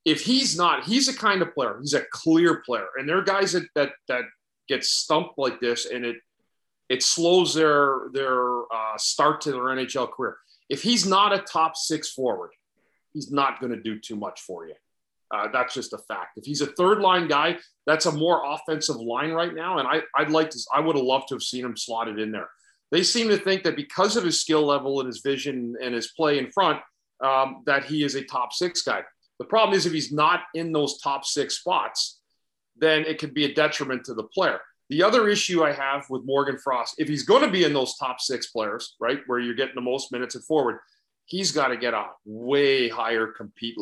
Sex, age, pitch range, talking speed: male, 40-59, 125-160 Hz, 225 wpm